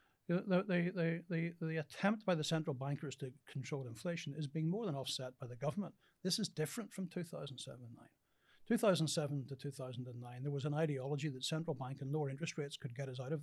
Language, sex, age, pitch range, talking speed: English, male, 60-79, 130-165 Hz, 205 wpm